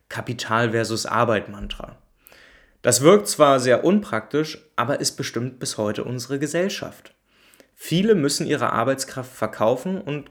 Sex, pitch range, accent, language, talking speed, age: male, 115-155 Hz, German, German, 110 wpm, 30-49